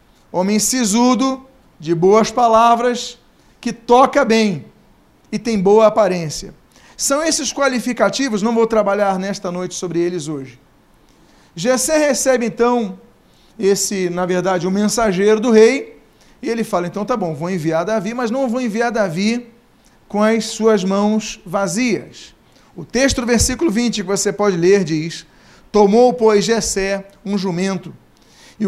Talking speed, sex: 145 wpm, male